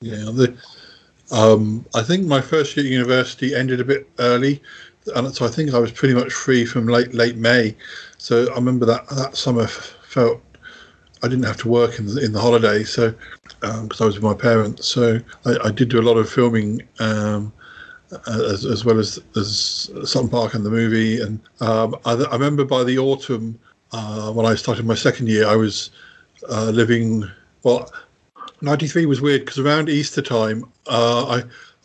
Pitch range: 110-125 Hz